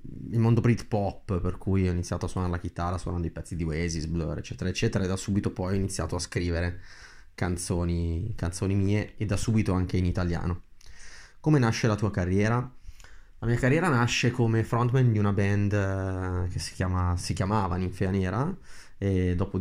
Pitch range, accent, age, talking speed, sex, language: 90-105 Hz, native, 20-39, 180 wpm, male, Italian